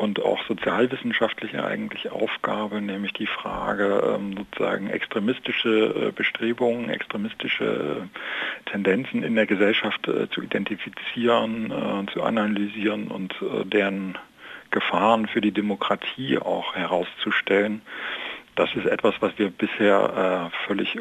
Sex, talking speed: male, 100 wpm